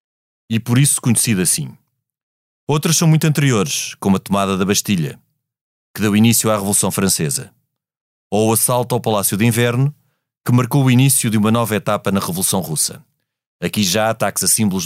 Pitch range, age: 110-145 Hz, 30-49